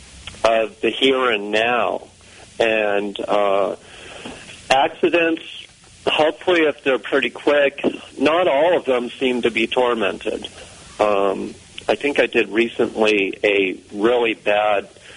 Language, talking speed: English, 120 wpm